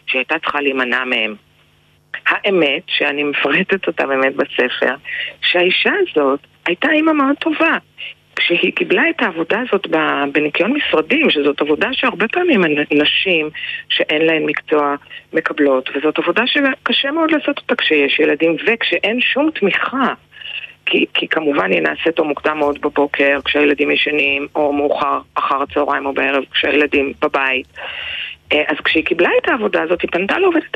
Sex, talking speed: female, 135 wpm